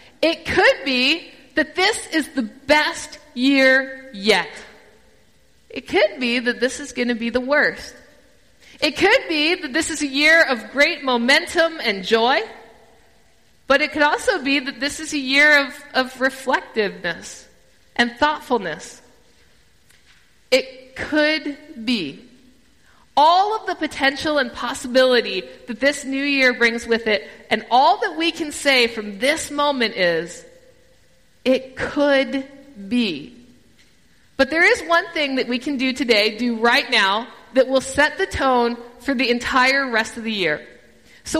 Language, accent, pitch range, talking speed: English, American, 245-300 Hz, 150 wpm